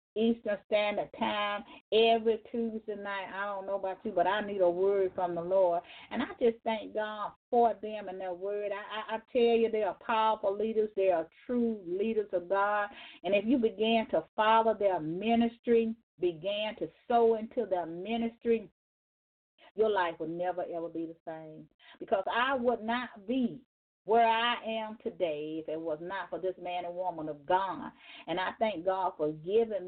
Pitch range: 180-225 Hz